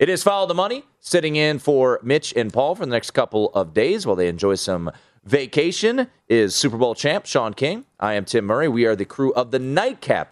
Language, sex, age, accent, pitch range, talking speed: English, male, 30-49, American, 115-175 Hz, 225 wpm